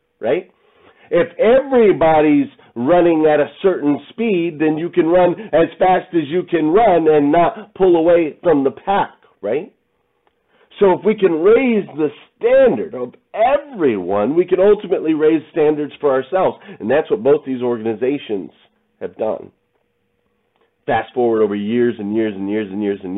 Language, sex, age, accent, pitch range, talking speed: English, male, 40-59, American, 100-160 Hz, 160 wpm